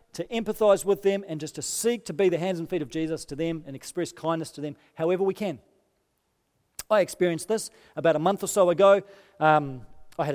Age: 40-59